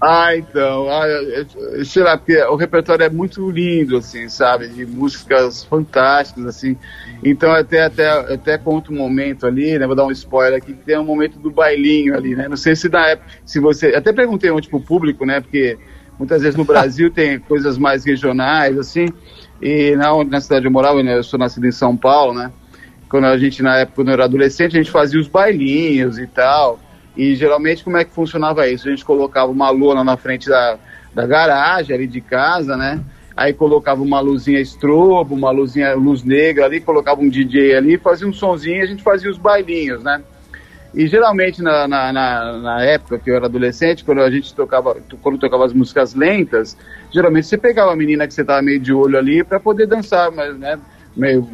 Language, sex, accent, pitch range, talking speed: Portuguese, male, Brazilian, 130-160 Hz, 195 wpm